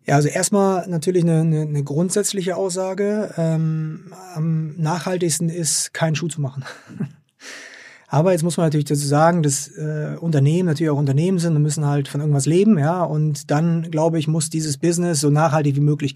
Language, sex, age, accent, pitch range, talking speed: German, male, 30-49, German, 140-165 Hz, 180 wpm